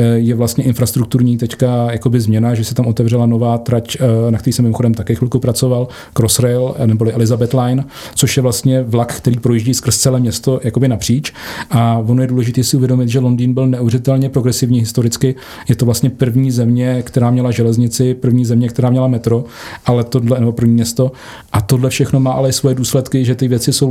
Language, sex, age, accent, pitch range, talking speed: Czech, male, 40-59, native, 120-130 Hz, 185 wpm